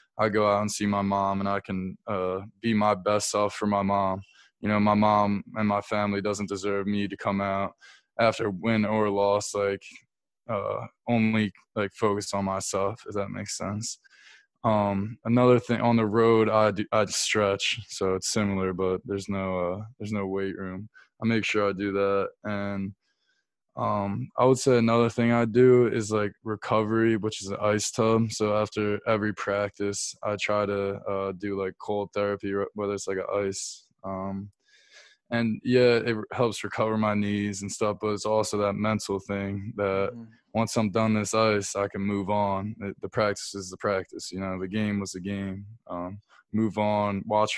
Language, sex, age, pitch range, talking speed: English, male, 20-39, 100-110 Hz, 185 wpm